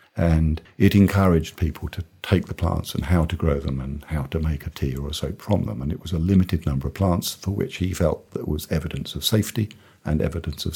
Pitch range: 80-100 Hz